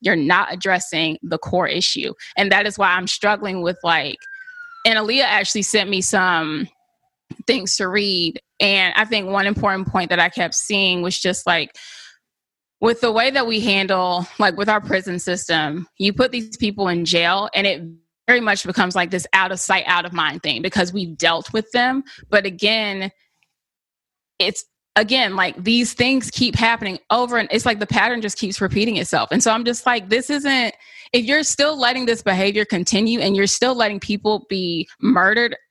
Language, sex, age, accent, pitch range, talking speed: English, female, 20-39, American, 185-230 Hz, 190 wpm